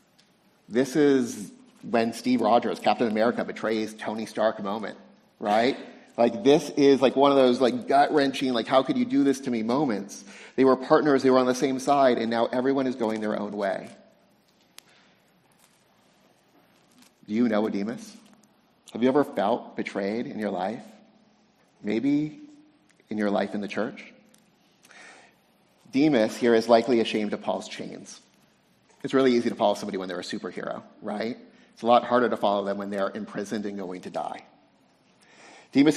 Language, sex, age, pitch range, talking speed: English, male, 30-49, 115-150 Hz, 170 wpm